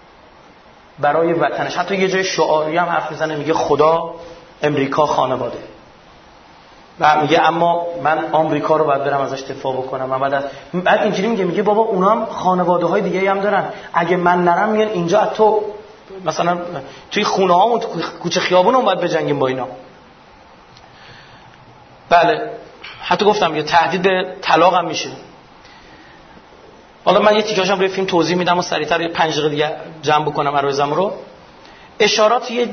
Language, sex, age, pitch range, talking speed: Persian, male, 30-49, 150-190 Hz, 150 wpm